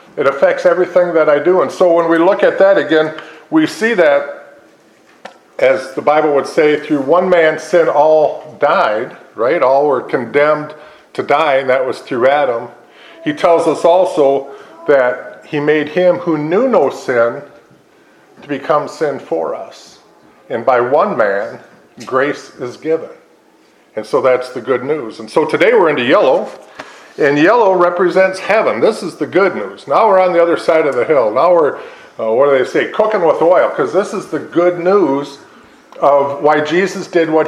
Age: 50-69